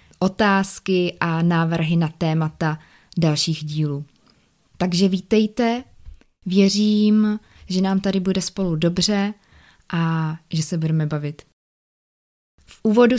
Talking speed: 105 wpm